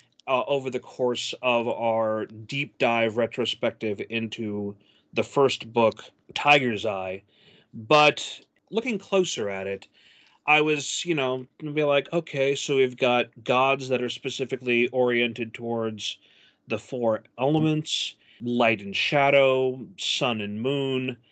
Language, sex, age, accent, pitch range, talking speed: English, male, 30-49, American, 110-145 Hz, 130 wpm